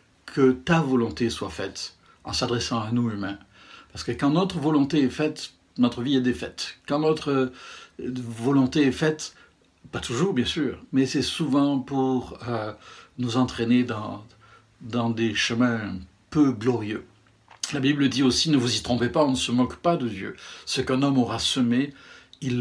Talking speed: 175 wpm